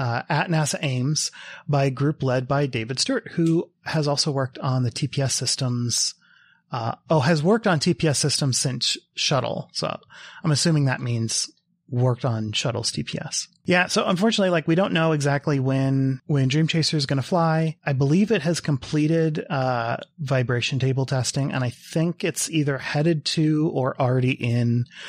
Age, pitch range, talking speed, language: 30-49, 125-155 Hz, 170 wpm, English